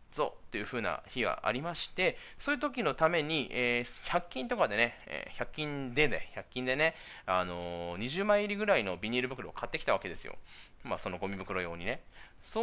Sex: male